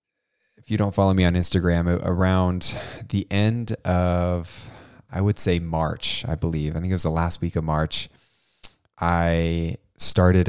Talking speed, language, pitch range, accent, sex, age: 160 wpm, English, 85-100 Hz, American, male, 20-39